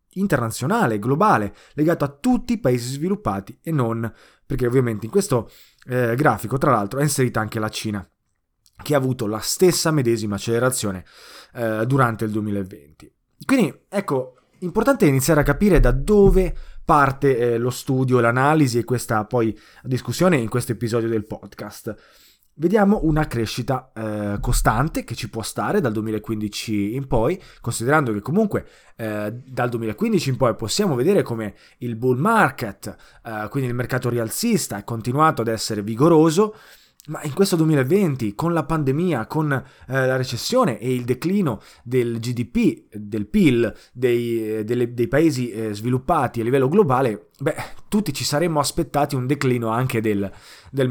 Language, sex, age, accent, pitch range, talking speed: Italian, male, 20-39, native, 110-155 Hz, 150 wpm